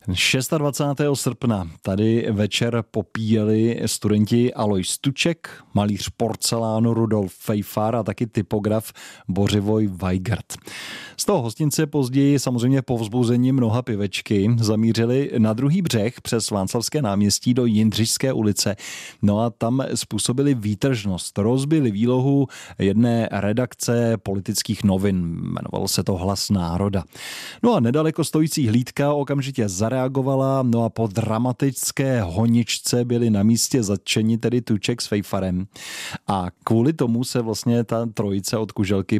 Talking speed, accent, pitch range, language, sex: 125 wpm, native, 105-125 Hz, Czech, male